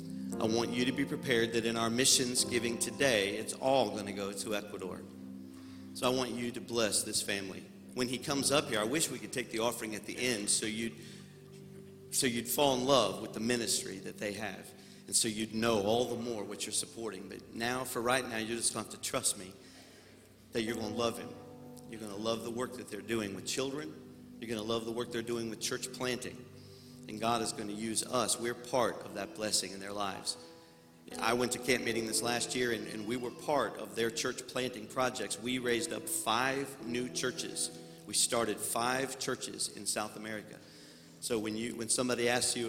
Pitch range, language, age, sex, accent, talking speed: 105-125 Hz, English, 50-69, male, American, 220 wpm